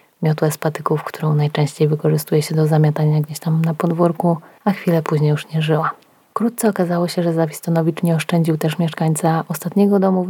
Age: 20-39